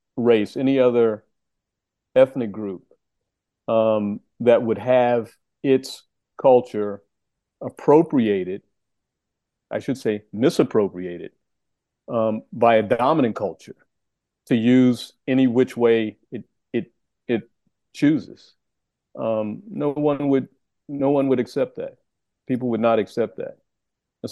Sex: male